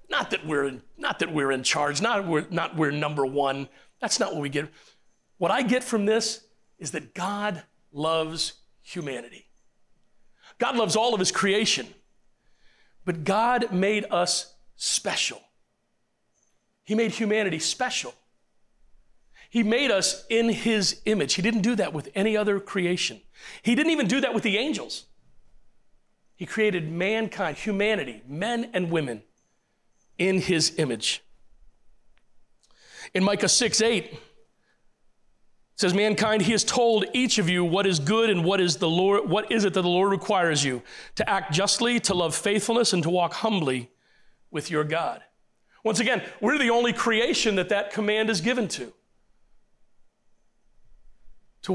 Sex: male